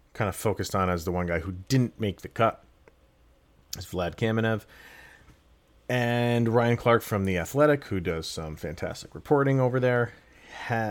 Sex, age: male, 40-59